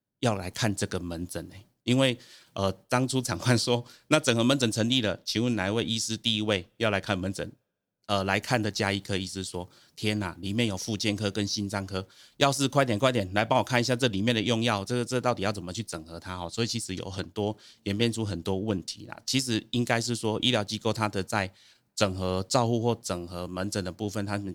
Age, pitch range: 30-49, 95-115 Hz